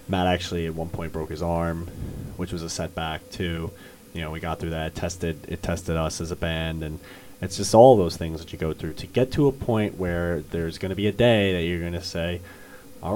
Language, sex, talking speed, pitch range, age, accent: English, male, 245 wpm, 80-95 Hz, 30-49, American